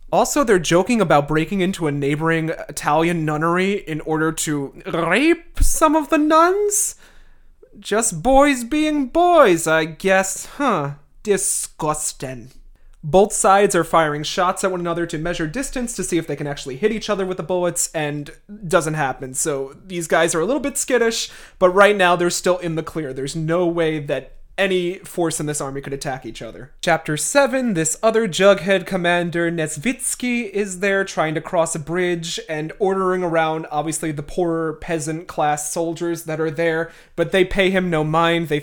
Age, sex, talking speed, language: 30-49, male, 175 wpm, English